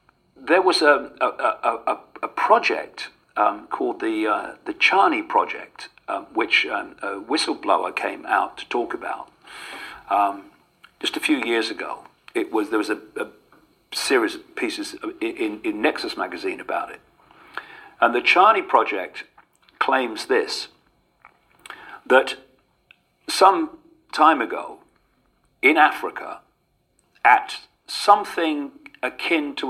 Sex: male